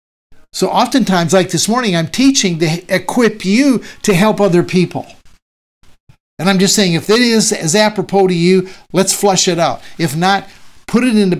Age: 60-79